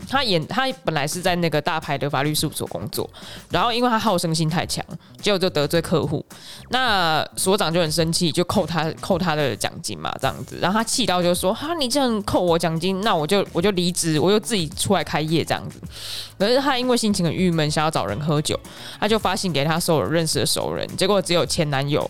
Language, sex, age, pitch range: Chinese, female, 20-39, 155-200 Hz